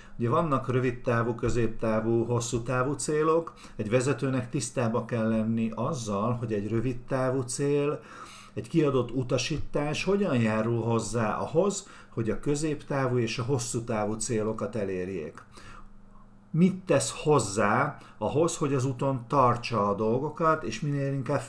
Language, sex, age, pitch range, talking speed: Hungarian, male, 50-69, 105-135 Hz, 130 wpm